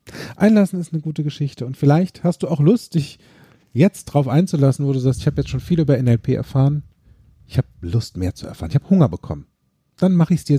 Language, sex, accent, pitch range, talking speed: German, male, German, 110-150 Hz, 230 wpm